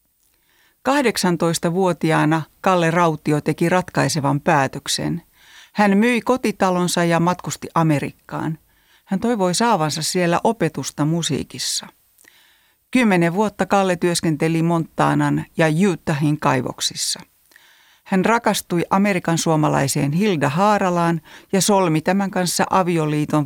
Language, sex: Finnish, female